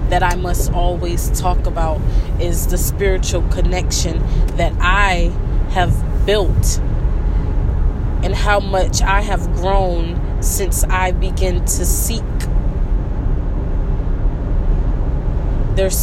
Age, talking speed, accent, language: 20-39, 95 wpm, American, English